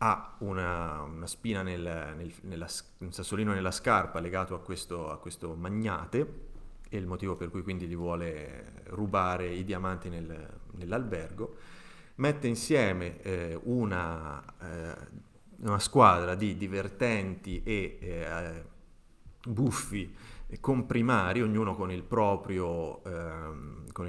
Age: 30-49